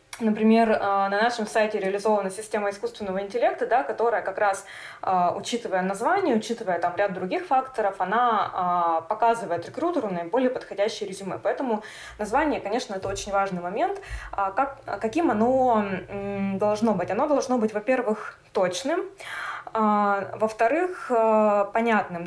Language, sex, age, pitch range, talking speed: Russian, female, 20-39, 200-255 Hz, 120 wpm